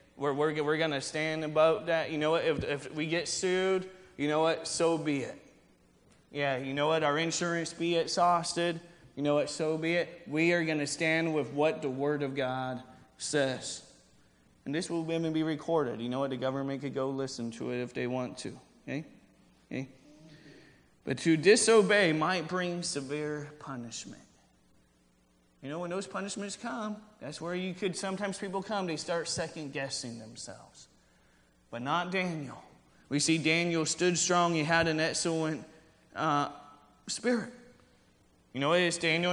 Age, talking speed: 20-39, 170 wpm